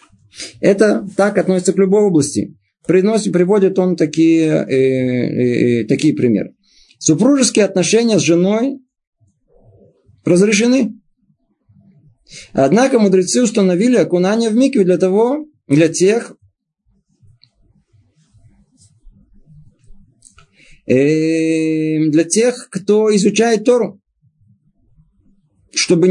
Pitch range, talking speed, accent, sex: 155-215 Hz, 75 wpm, native, male